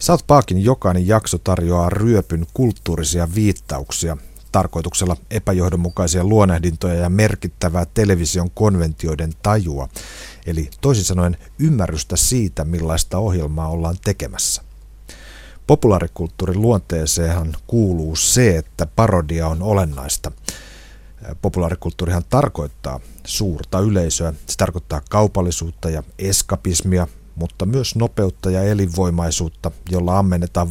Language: Finnish